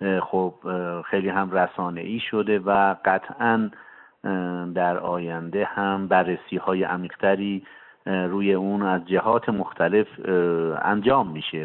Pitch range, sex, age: 90-105 Hz, male, 50-69